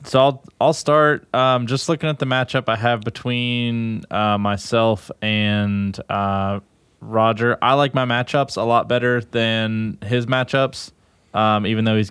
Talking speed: 160 wpm